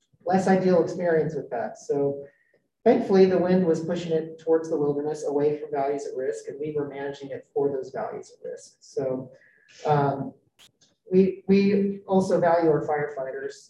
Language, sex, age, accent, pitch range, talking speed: English, male, 30-49, American, 140-175 Hz, 165 wpm